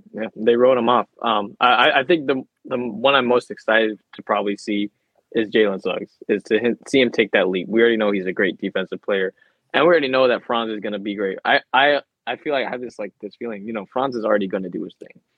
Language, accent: English, American